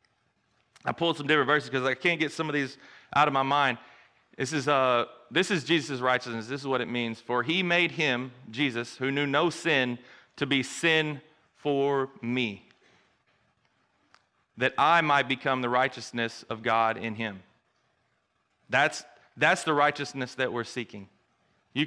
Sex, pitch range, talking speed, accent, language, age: male, 120-155 Hz, 160 wpm, American, English, 30-49